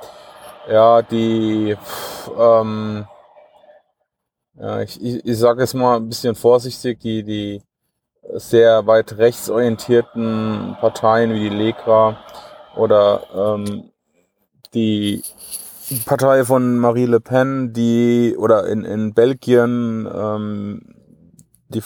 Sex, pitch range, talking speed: male, 110-125 Hz, 105 wpm